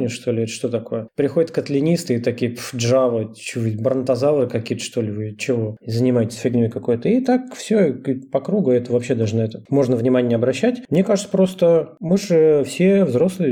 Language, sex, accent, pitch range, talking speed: Russian, male, native, 120-155 Hz, 180 wpm